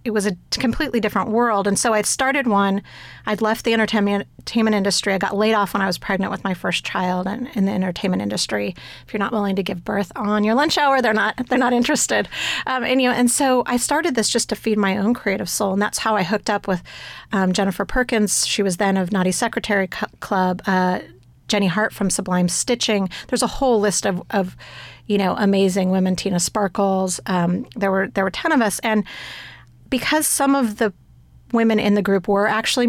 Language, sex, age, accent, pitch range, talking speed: English, female, 40-59, American, 195-230 Hz, 220 wpm